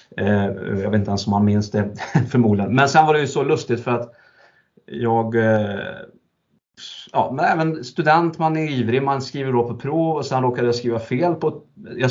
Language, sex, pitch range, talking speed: Swedish, male, 105-130 Hz, 195 wpm